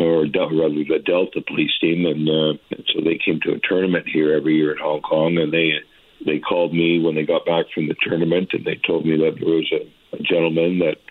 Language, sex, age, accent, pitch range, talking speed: English, male, 60-79, American, 80-90 Hz, 240 wpm